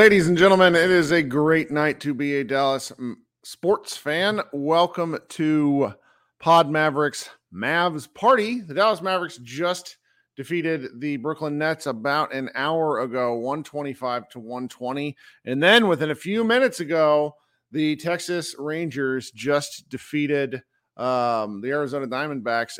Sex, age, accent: male, 40-59, American